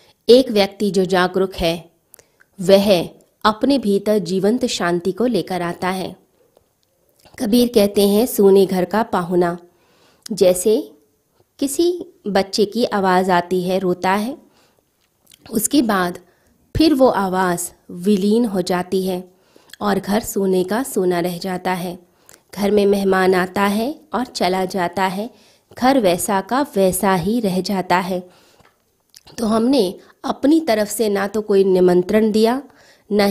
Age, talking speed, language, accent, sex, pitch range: 20-39, 135 wpm, Hindi, native, female, 185-225 Hz